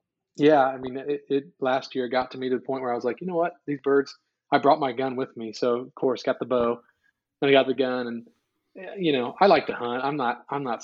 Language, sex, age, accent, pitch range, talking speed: English, male, 20-39, American, 115-130 Hz, 275 wpm